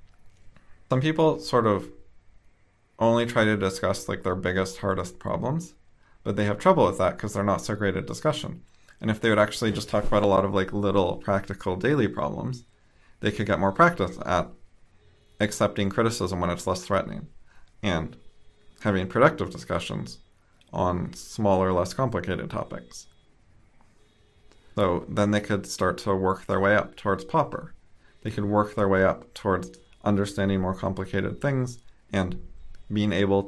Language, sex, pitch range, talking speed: English, male, 95-105 Hz, 160 wpm